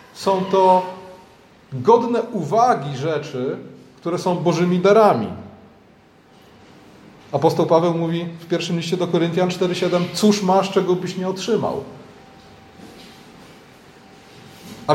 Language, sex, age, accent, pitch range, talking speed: Polish, male, 40-59, native, 155-210 Hz, 100 wpm